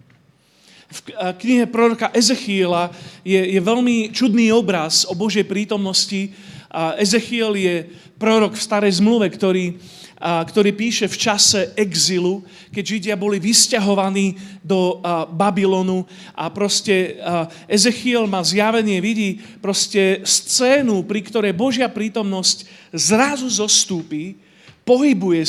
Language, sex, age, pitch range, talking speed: Slovak, male, 40-59, 170-215 Hz, 100 wpm